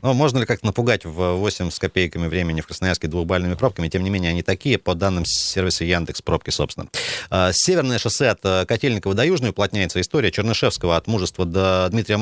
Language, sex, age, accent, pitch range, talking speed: Russian, male, 30-49, native, 90-115 Hz, 180 wpm